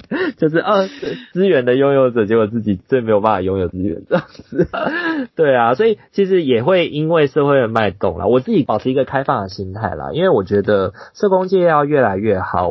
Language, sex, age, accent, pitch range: Chinese, male, 20-39, native, 95-135 Hz